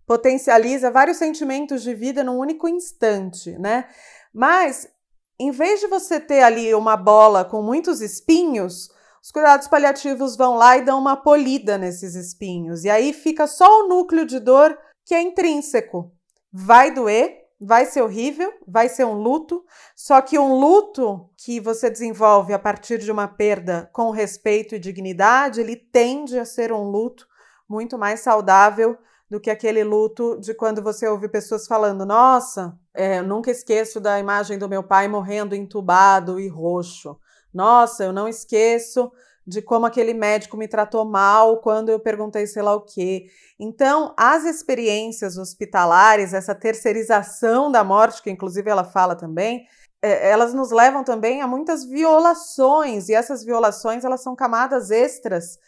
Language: Portuguese